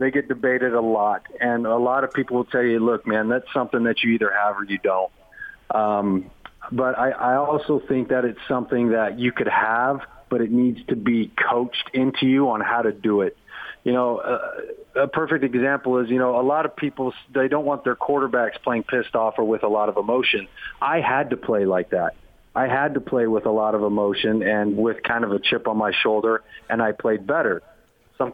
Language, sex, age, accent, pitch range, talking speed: English, male, 40-59, American, 110-135 Hz, 225 wpm